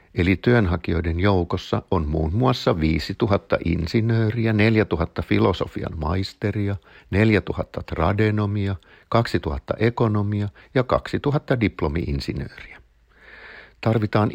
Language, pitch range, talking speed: Finnish, 85-115 Hz, 80 wpm